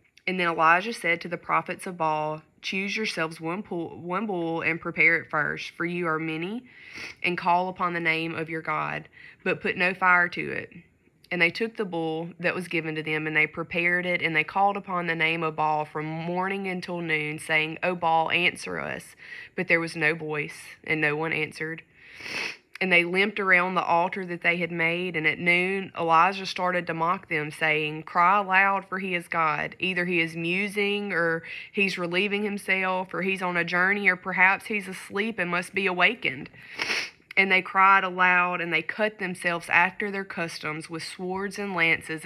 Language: English